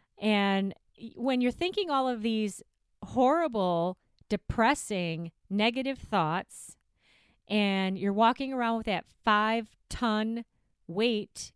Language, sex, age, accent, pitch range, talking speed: English, female, 30-49, American, 205-255 Hz, 105 wpm